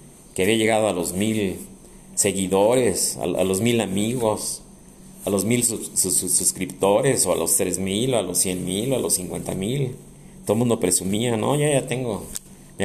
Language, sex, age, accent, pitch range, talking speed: Spanish, male, 40-59, Mexican, 105-145 Hz, 200 wpm